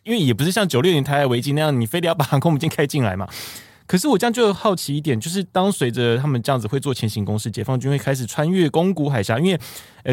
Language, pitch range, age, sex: Chinese, 120-175 Hz, 20-39, male